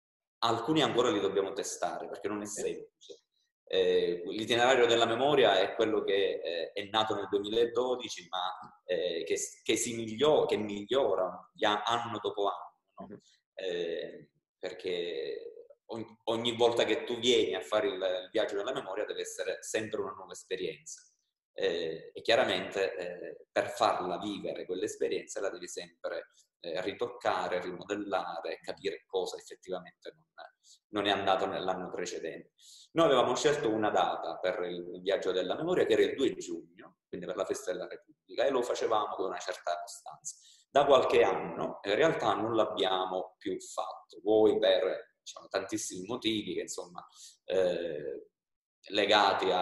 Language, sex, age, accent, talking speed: Italian, male, 20-39, native, 145 wpm